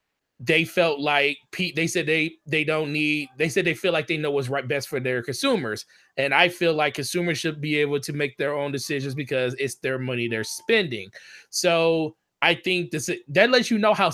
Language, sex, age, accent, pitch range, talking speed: English, male, 20-39, American, 145-180 Hz, 210 wpm